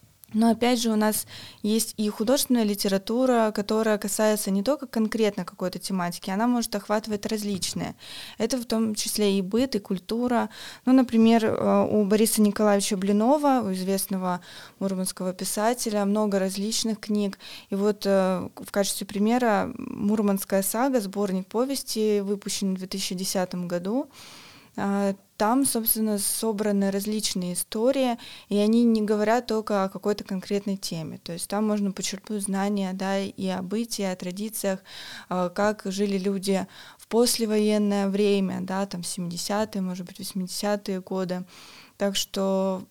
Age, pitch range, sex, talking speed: 20-39, 195-220 Hz, female, 135 wpm